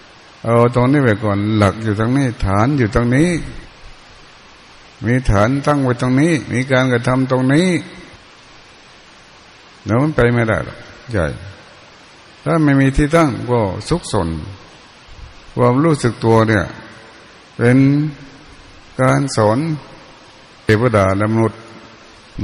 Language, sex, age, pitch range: Thai, male, 60-79, 110-135 Hz